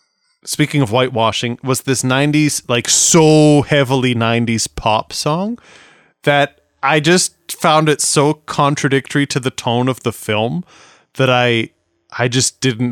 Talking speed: 140 wpm